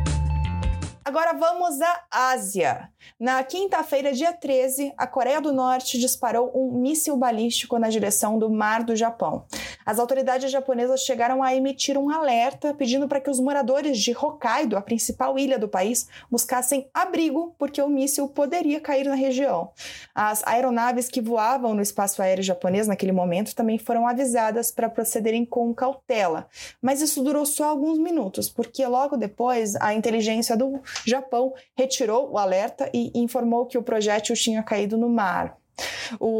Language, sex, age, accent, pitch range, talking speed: Portuguese, female, 20-39, Brazilian, 220-270 Hz, 155 wpm